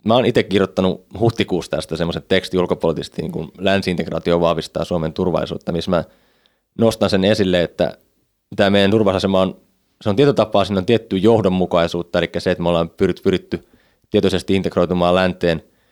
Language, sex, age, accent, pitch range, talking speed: Finnish, male, 20-39, native, 90-105 Hz, 145 wpm